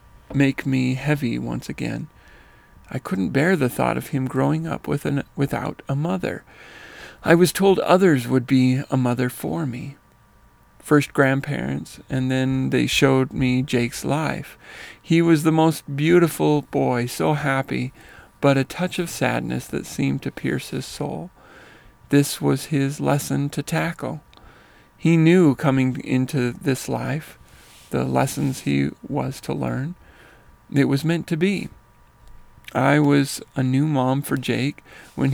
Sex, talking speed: male, 145 wpm